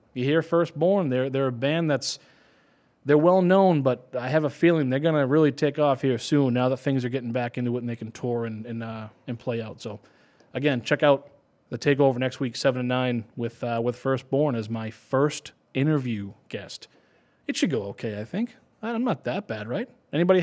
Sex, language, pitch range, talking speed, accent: male, English, 125-175 Hz, 220 wpm, American